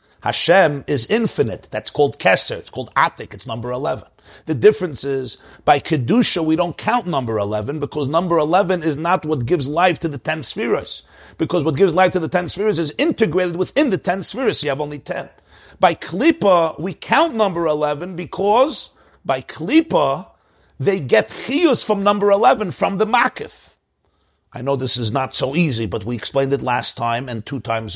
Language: English